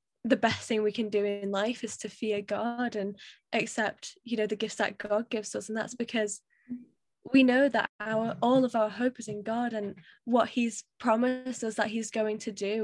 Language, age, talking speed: English, 10-29, 215 wpm